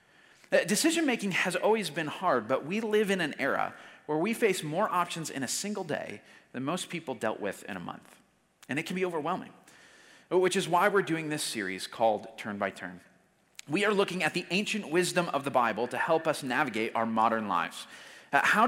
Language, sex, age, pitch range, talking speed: English, male, 30-49, 140-200 Hz, 200 wpm